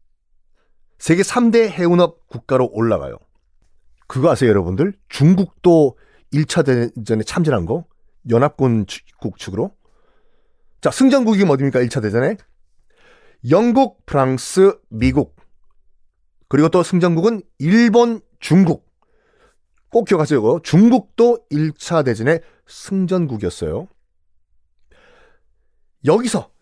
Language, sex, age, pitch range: Korean, male, 30-49, 115-185 Hz